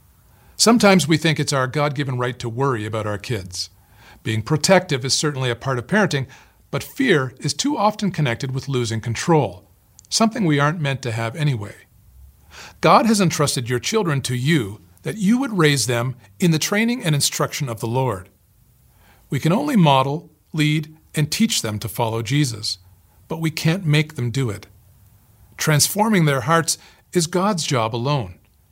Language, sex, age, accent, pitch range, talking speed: English, male, 40-59, American, 110-160 Hz, 170 wpm